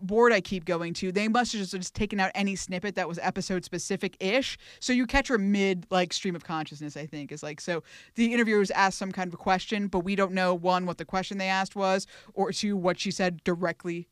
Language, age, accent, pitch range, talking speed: English, 20-39, American, 175-225 Hz, 245 wpm